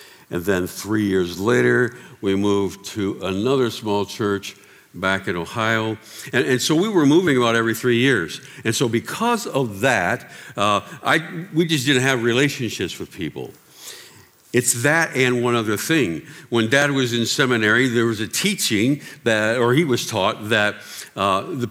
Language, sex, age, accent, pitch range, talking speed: English, male, 60-79, American, 105-135 Hz, 170 wpm